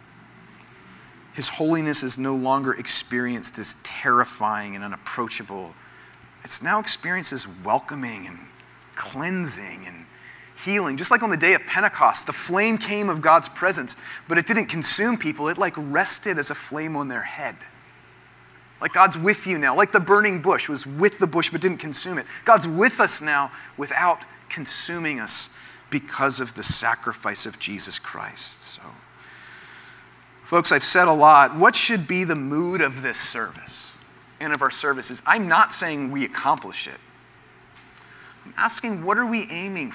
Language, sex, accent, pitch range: English, male, American, 130-190 Hz